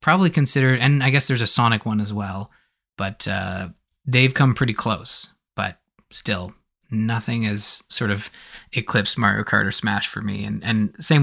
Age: 20-39